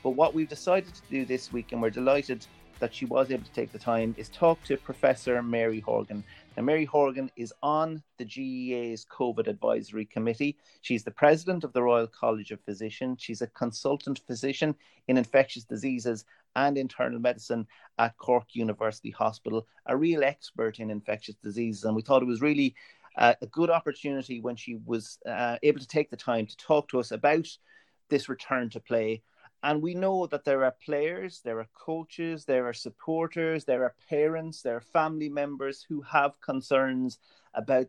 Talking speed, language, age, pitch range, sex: 185 wpm, English, 30-49, 115-145 Hz, male